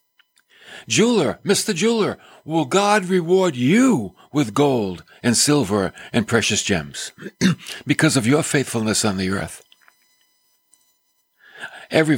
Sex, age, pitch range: male, 50-69, 110-175 Hz